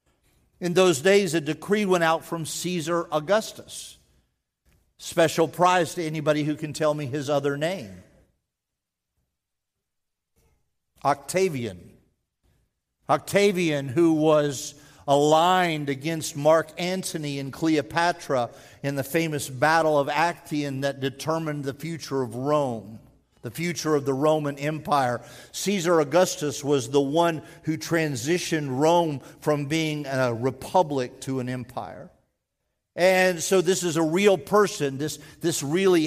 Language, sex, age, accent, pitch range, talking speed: English, male, 50-69, American, 140-170 Hz, 125 wpm